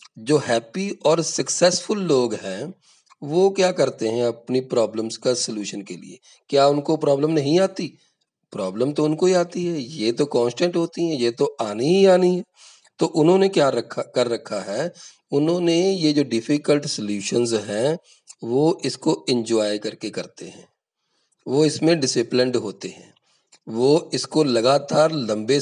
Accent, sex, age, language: native, male, 40-59, Hindi